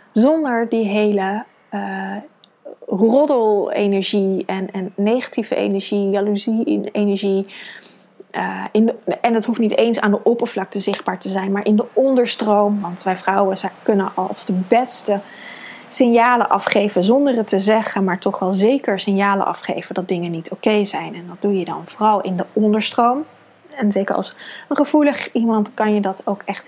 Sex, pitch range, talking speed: female, 195-240 Hz, 165 wpm